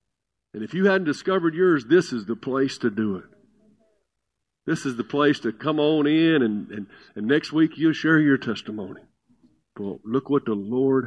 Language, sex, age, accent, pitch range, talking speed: English, male, 50-69, American, 135-195 Hz, 180 wpm